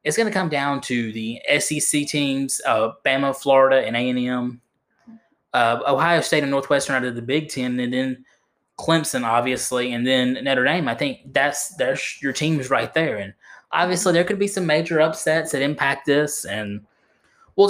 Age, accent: 10-29, American